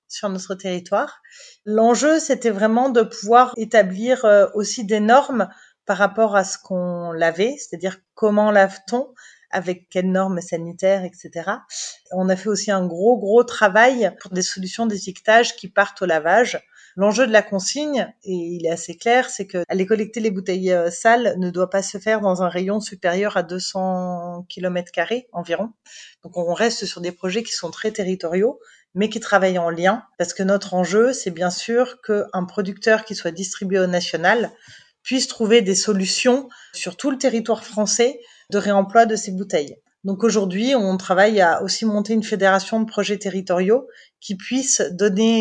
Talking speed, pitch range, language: 170 wpm, 185-225 Hz, French